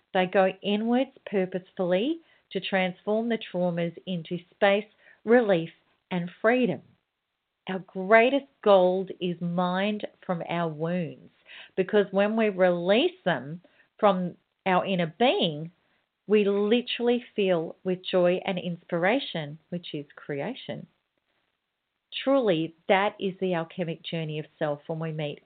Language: English